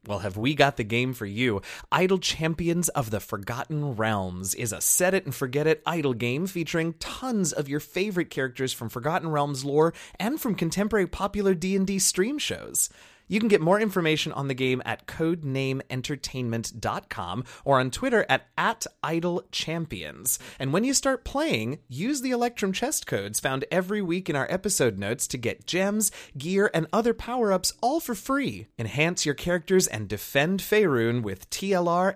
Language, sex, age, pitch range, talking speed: English, male, 30-49, 115-180 Hz, 170 wpm